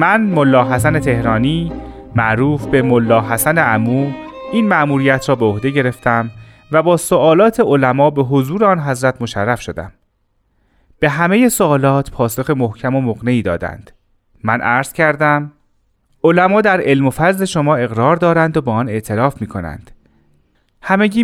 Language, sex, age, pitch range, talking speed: Persian, male, 30-49, 110-160 Hz, 140 wpm